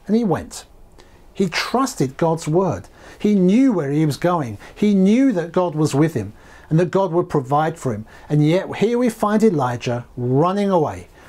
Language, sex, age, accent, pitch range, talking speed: English, male, 60-79, British, 130-225 Hz, 185 wpm